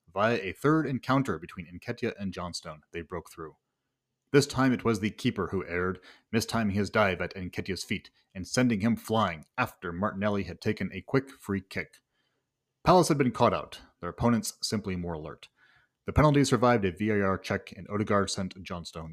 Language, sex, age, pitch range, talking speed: English, male, 30-49, 95-130 Hz, 180 wpm